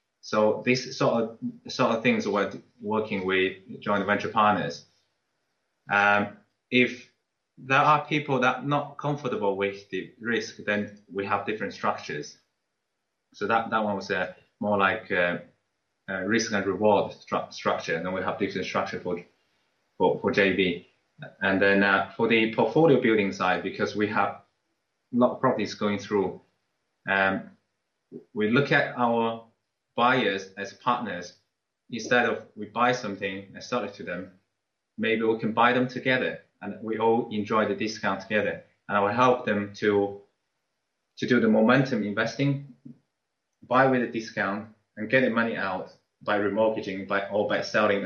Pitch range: 100-120 Hz